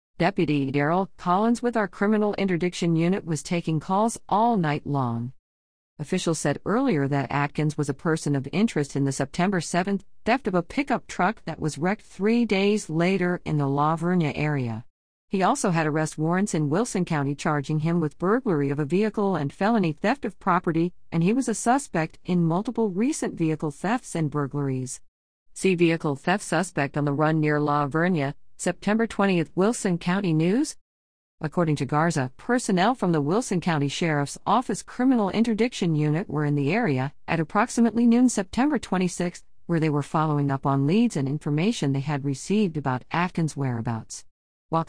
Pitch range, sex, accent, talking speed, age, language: 145-200 Hz, female, American, 170 wpm, 50-69, English